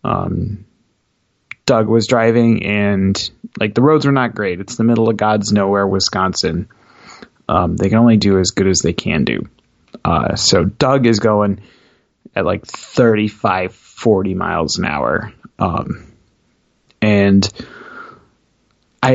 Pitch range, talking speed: 100-120 Hz, 140 wpm